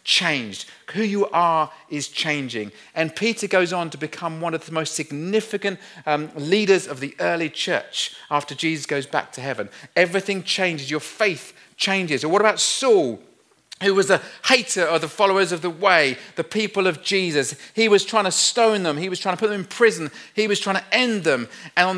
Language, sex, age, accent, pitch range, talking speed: English, male, 40-59, British, 145-195 Hz, 200 wpm